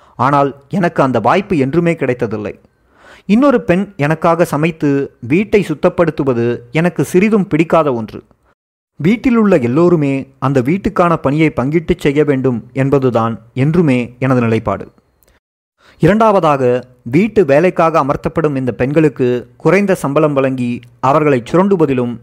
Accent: native